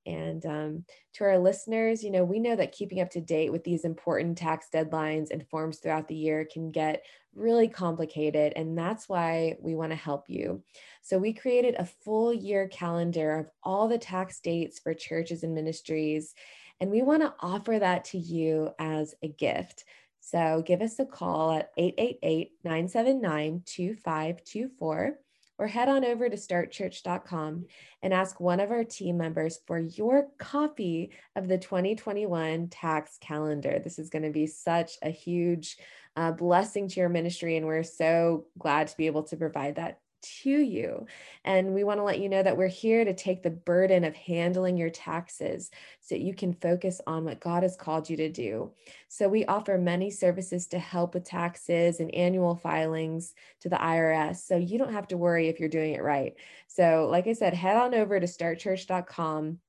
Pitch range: 160-195 Hz